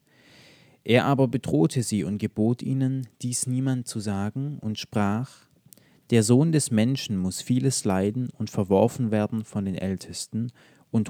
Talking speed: 145 wpm